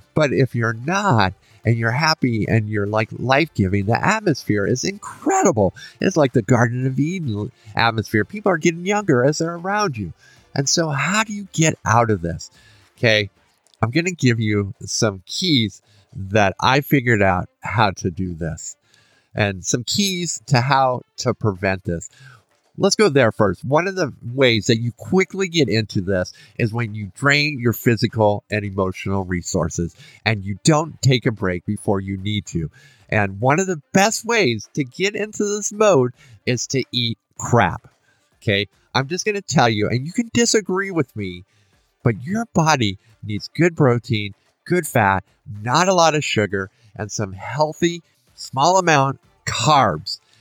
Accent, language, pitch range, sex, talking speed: American, English, 105-155 Hz, male, 170 wpm